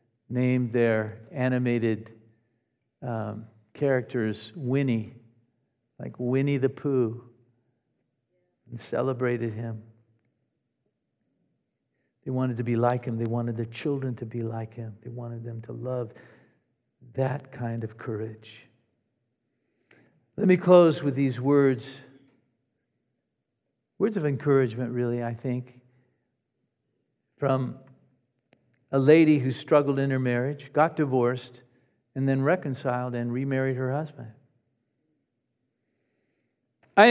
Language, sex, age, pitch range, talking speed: English, male, 50-69, 120-170 Hz, 105 wpm